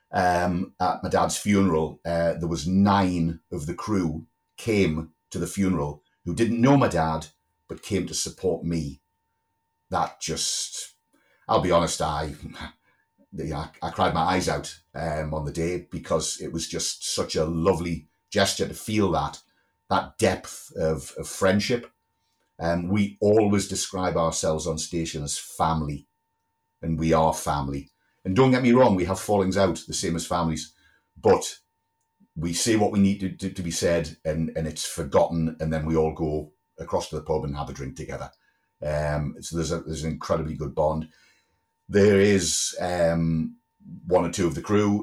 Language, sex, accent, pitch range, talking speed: English, male, British, 80-100 Hz, 170 wpm